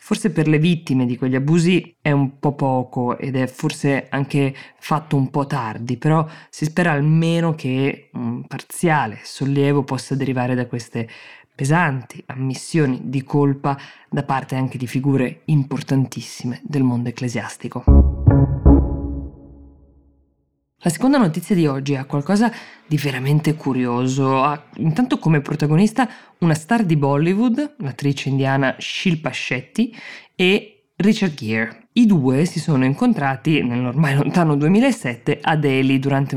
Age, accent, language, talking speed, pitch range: 20-39, native, Italian, 135 wpm, 130-165 Hz